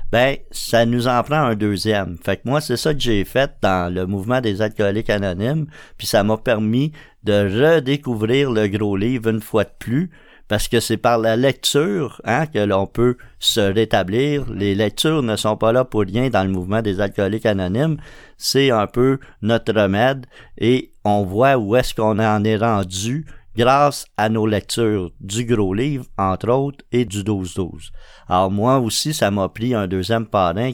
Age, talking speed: 50-69, 185 wpm